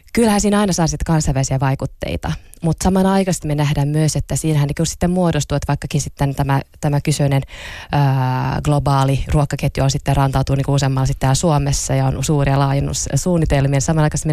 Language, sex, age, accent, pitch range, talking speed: Finnish, female, 20-39, native, 140-160 Hz, 155 wpm